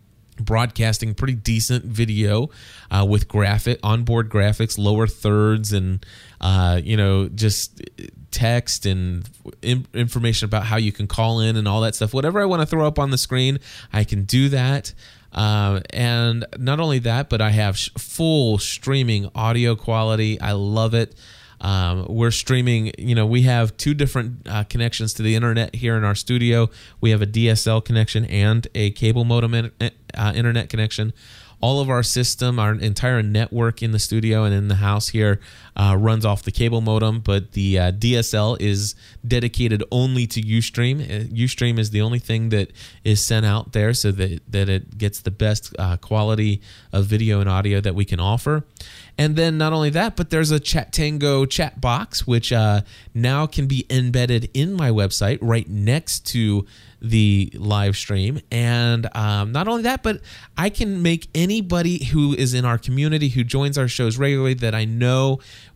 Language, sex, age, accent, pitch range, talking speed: English, male, 20-39, American, 105-125 Hz, 180 wpm